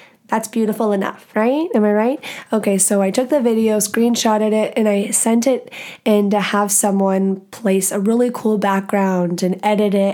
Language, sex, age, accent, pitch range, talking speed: English, female, 20-39, American, 195-230 Hz, 185 wpm